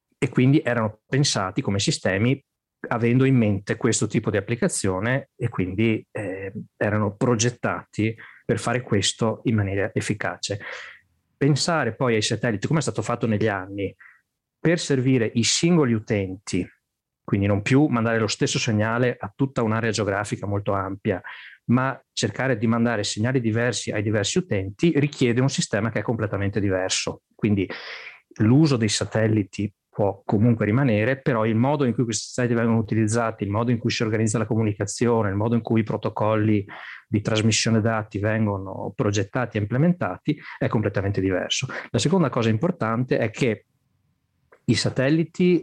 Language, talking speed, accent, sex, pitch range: Italian, 150 wpm, native, male, 105-125 Hz